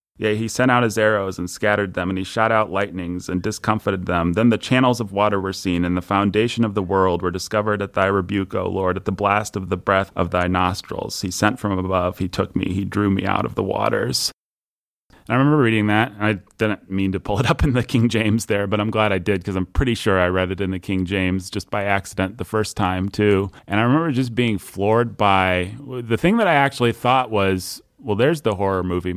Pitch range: 95-110 Hz